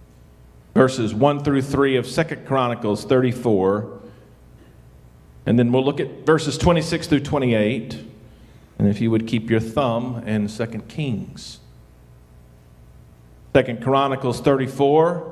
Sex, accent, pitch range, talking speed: male, American, 115-160 Hz, 120 wpm